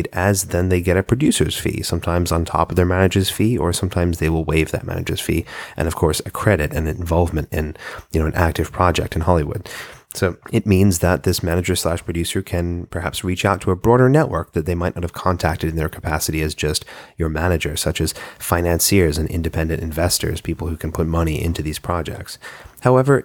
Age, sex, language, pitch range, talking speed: 30-49, male, English, 85-100 Hz, 210 wpm